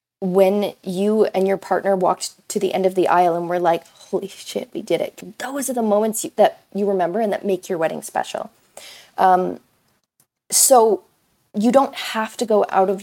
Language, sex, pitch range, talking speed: English, female, 185-220 Hz, 200 wpm